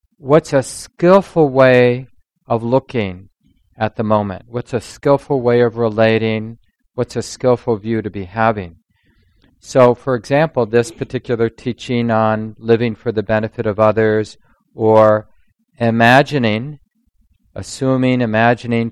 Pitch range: 110-125 Hz